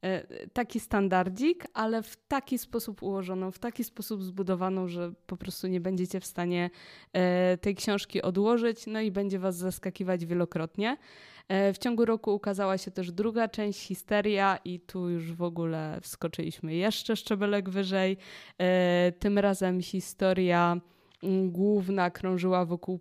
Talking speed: 135 wpm